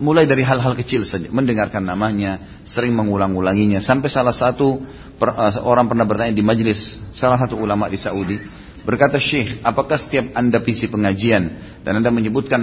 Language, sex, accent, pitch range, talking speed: Indonesian, male, native, 100-130 Hz, 150 wpm